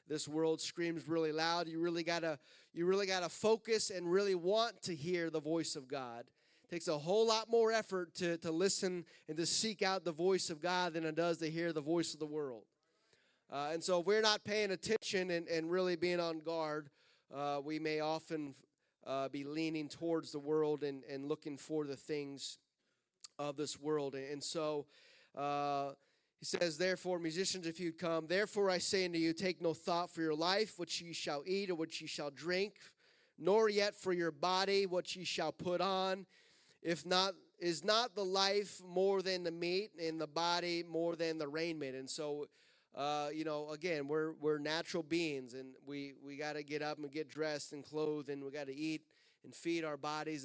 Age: 30-49